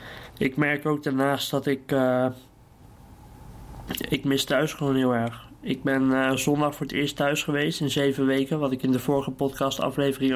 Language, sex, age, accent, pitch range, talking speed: Dutch, male, 20-39, Dutch, 130-140 Hz, 185 wpm